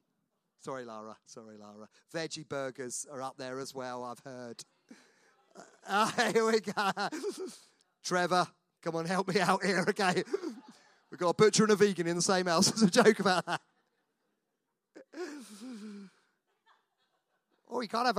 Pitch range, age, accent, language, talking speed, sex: 175-245 Hz, 40-59, British, English, 150 wpm, male